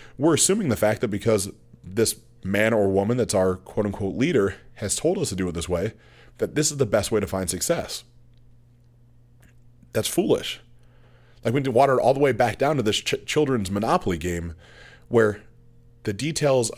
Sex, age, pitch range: male, 30-49, 100-125 Hz